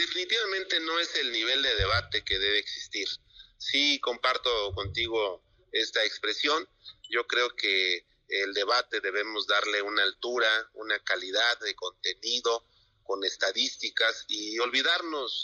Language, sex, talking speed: Spanish, male, 125 wpm